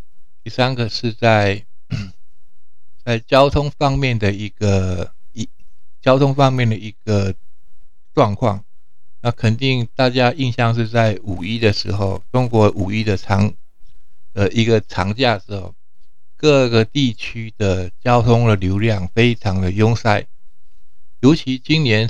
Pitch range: 100-120 Hz